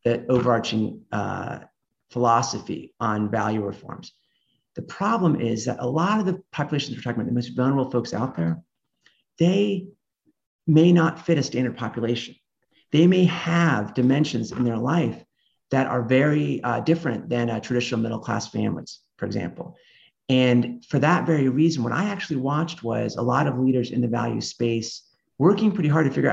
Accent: American